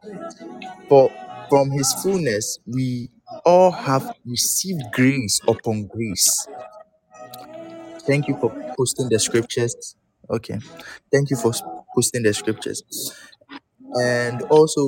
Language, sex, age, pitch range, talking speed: English, male, 20-39, 120-155 Hz, 105 wpm